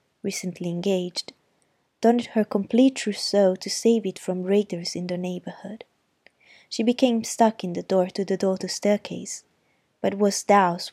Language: Italian